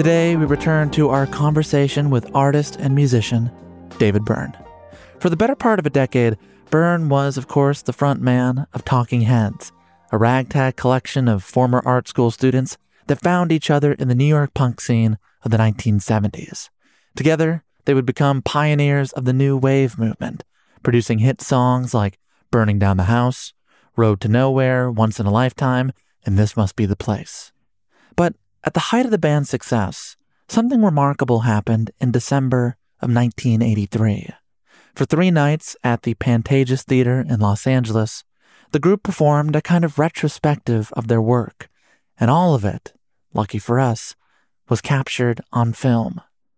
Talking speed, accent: 165 wpm, American